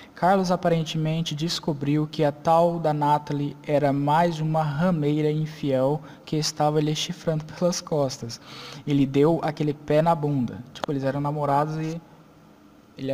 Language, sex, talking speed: Portuguese, male, 140 wpm